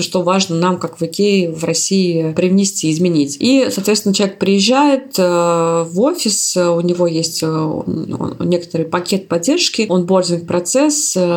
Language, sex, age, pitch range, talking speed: Russian, female, 20-39, 170-195 Hz, 135 wpm